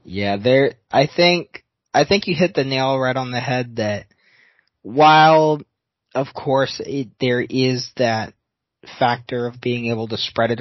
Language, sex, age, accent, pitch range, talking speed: English, male, 20-39, American, 115-140 Hz, 165 wpm